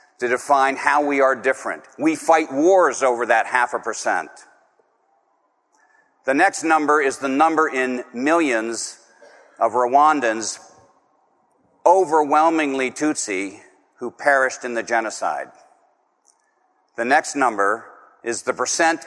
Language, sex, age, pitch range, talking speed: English, male, 50-69, 120-150 Hz, 115 wpm